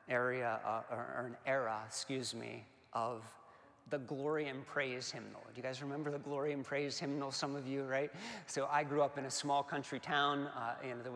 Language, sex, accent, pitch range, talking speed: English, male, American, 130-160 Hz, 205 wpm